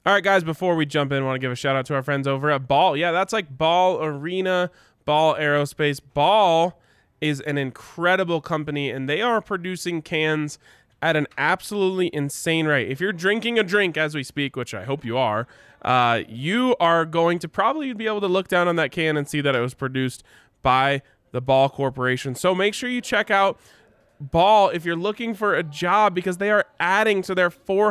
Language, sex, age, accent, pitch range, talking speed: English, male, 20-39, American, 145-190 Hz, 210 wpm